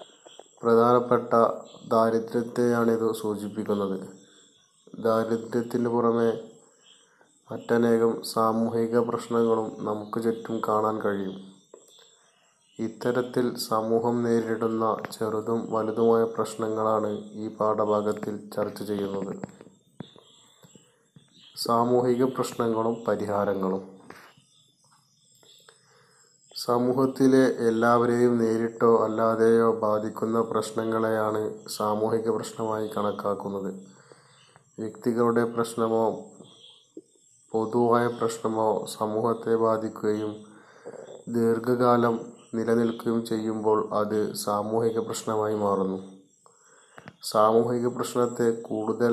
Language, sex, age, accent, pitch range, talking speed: Malayalam, male, 30-49, native, 110-115 Hz, 60 wpm